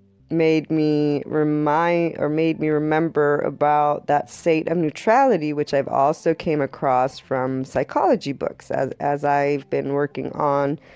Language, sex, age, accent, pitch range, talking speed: English, female, 20-39, American, 140-165 Hz, 140 wpm